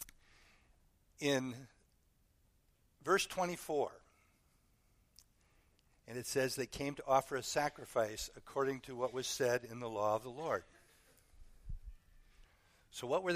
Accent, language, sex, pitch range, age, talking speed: American, English, male, 115-160 Hz, 60-79, 115 wpm